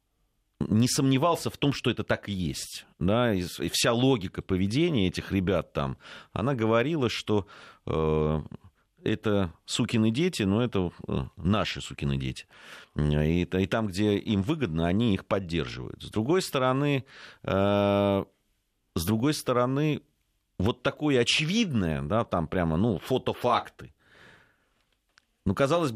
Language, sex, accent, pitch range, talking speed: Russian, male, native, 85-120 Hz, 130 wpm